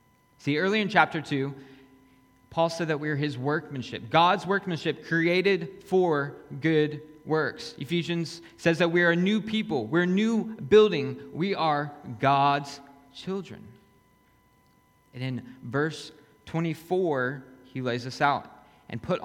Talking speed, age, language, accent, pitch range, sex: 135 wpm, 20-39, English, American, 125-170 Hz, male